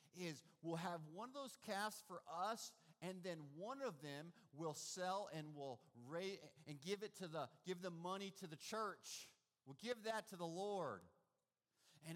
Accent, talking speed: American, 185 wpm